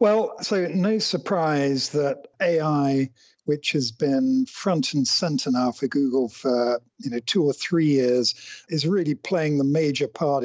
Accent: British